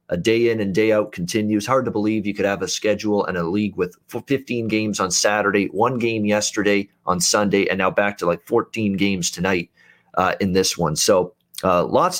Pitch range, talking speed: 100-115 Hz, 210 wpm